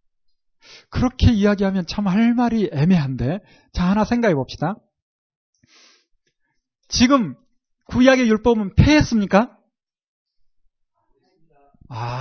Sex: male